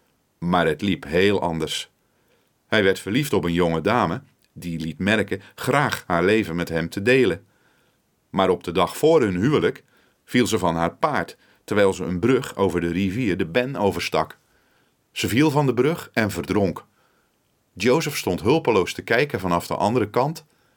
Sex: male